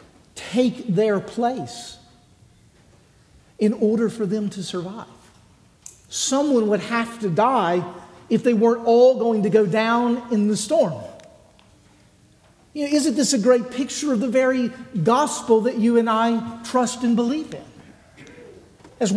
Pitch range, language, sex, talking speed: 200-250 Hz, English, male, 140 wpm